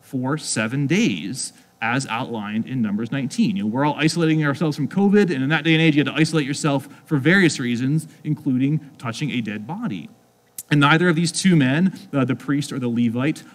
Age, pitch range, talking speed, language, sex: 30-49, 125-160 Hz, 210 wpm, English, male